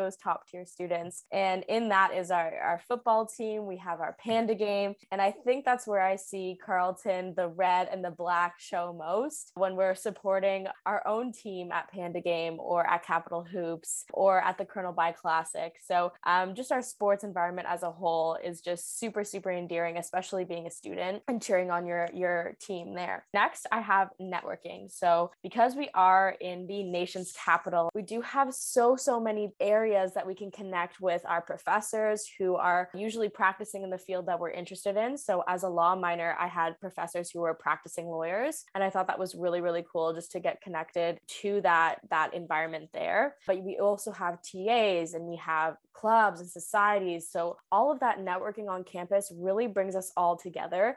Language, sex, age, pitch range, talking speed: English, female, 20-39, 175-205 Hz, 195 wpm